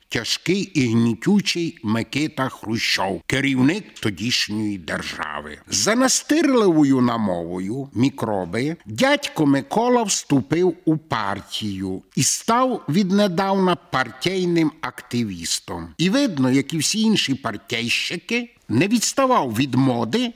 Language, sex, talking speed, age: Ukrainian, male, 100 wpm, 60-79